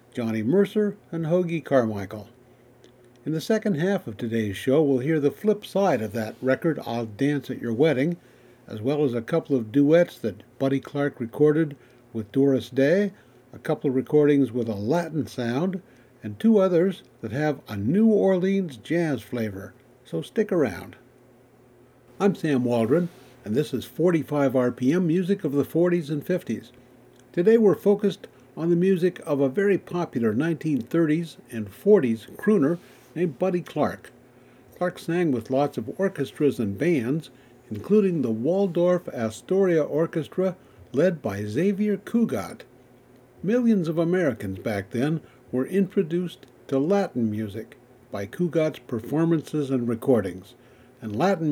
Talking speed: 145 wpm